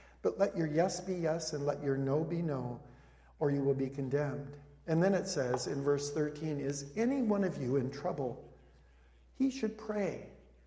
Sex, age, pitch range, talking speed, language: male, 50-69, 130-190 Hz, 190 wpm, English